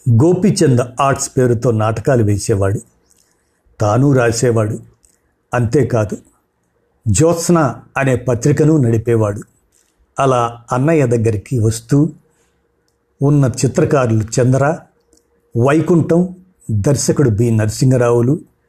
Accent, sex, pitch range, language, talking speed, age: native, male, 115-145 Hz, Telugu, 75 wpm, 50-69